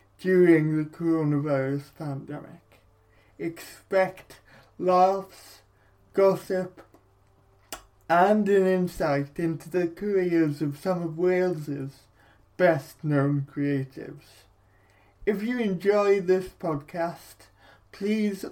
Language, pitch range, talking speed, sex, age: English, 145-185 Hz, 80 wpm, male, 20-39